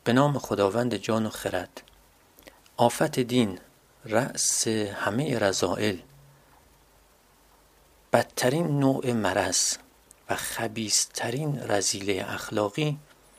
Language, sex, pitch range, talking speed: Persian, male, 110-150 Hz, 80 wpm